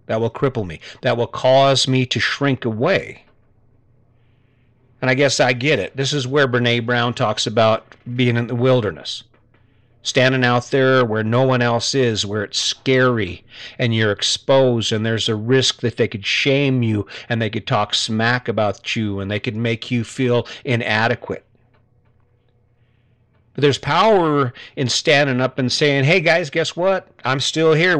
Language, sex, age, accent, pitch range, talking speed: English, male, 50-69, American, 115-140 Hz, 170 wpm